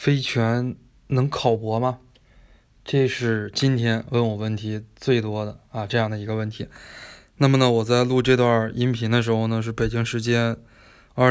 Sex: male